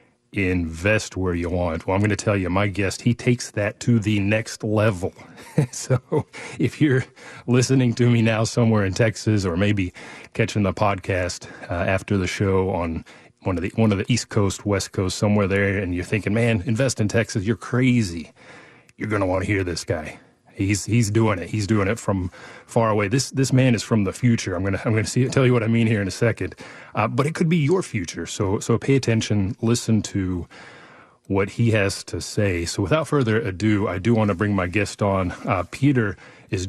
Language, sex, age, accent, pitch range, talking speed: English, male, 30-49, American, 95-115 Hz, 215 wpm